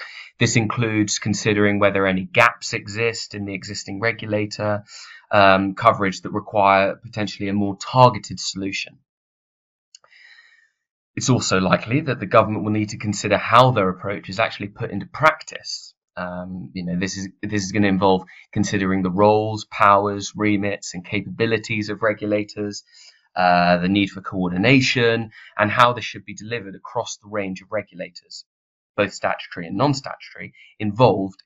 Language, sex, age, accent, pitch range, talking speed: English, male, 20-39, British, 95-115 Hz, 150 wpm